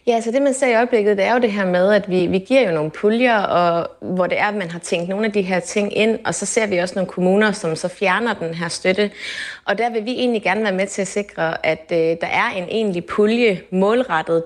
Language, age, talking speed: Danish, 30-49, 275 wpm